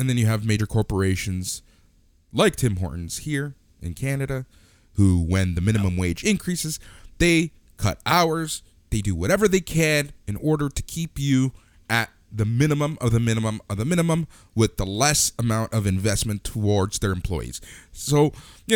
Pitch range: 90-145 Hz